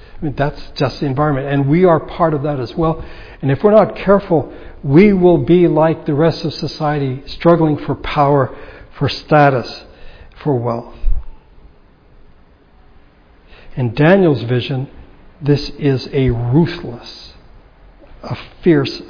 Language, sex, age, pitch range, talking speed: English, male, 60-79, 130-155 Hz, 135 wpm